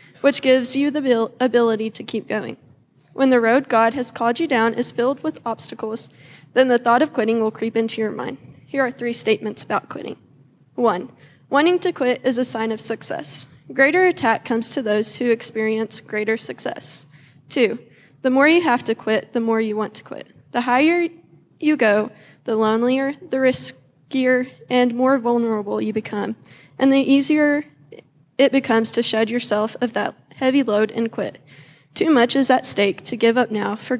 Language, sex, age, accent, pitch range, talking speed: English, female, 10-29, American, 220-260 Hz, 185 wpm